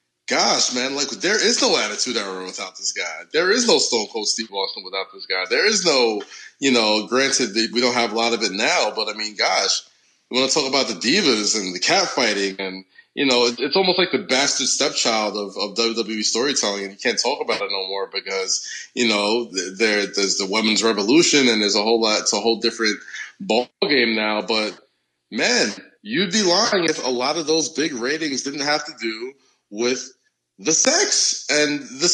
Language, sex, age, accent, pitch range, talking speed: English, male, 20-39, American, 105-140 Hz, 205 wpm